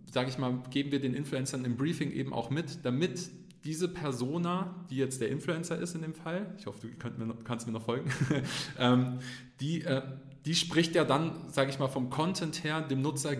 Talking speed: 200 wpm